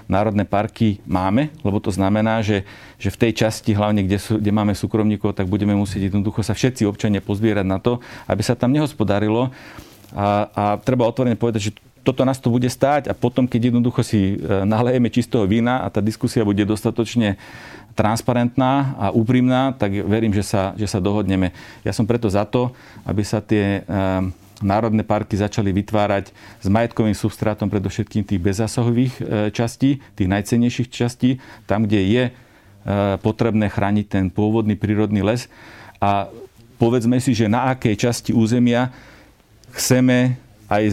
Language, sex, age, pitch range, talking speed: Slovak, male, 40-59, 105-120 Hz, 155 wpm